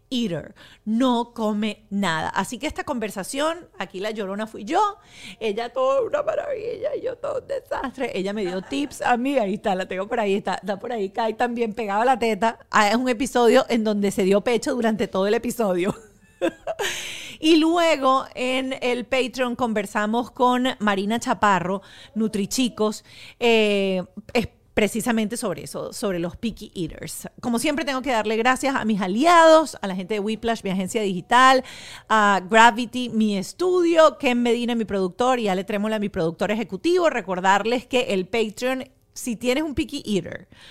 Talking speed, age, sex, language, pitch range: 170 wpm, 40-59, female, Spanish, 195-250 Hz